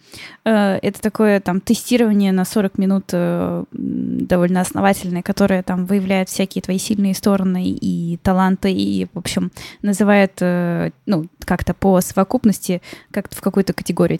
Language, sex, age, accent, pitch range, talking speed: Russian, female, 10-29, native, 185-215 Hz, 125 wpm